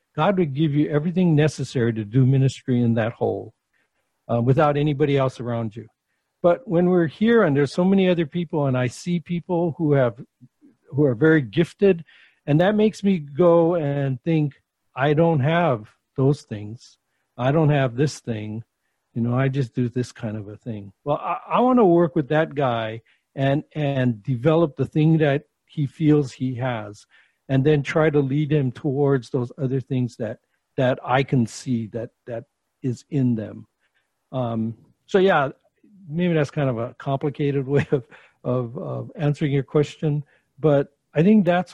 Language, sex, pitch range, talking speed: English, male, 125-160 Hz, 180 wpm